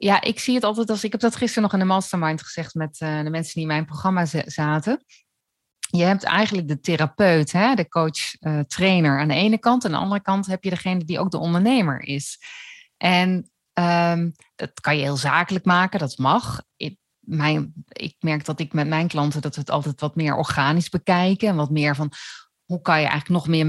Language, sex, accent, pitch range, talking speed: Dutch, female, Dutch, 150-215 Hz, 225 wpm